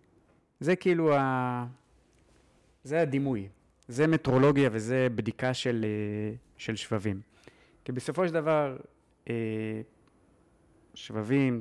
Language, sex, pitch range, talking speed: Hebrew, male, 105-135 Hz, 90 wpm